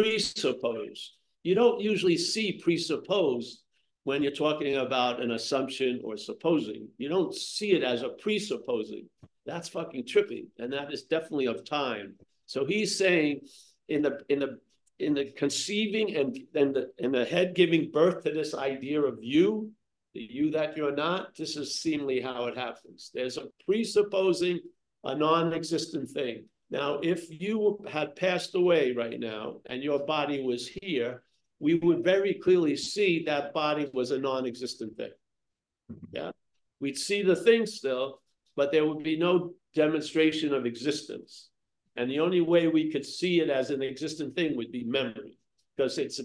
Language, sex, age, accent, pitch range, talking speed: English, male, 60-79, American, 140-185 Hz, 160 wpm